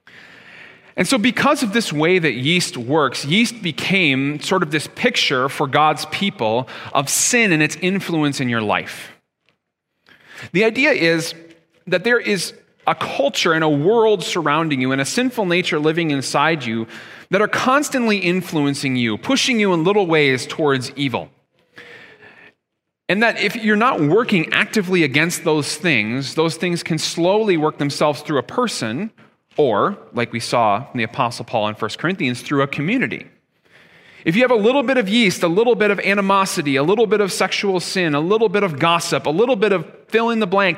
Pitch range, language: 140-200 Hz, English